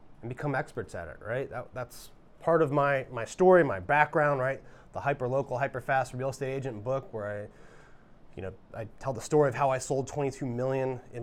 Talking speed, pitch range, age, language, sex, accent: 205 wpm, 110-140 Hz, 20-39, English, male, American